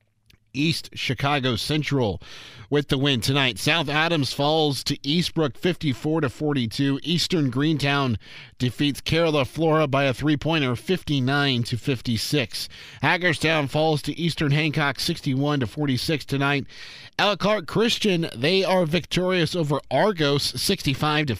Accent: American